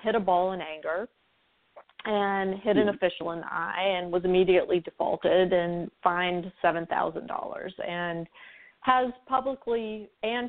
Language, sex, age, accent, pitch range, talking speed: English, female, 40-59, American, 175-215 Hz, 130 wpm